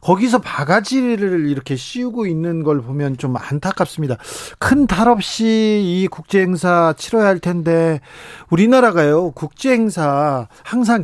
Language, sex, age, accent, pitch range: Korean, male, 40-59, native, 155-220 Hz